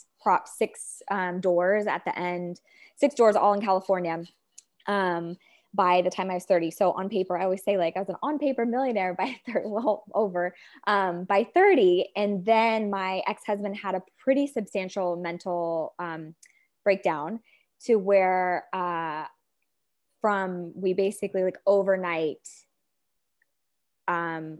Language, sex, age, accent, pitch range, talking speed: English, female, 20-39, American, 180-210 Hz, 145 wpm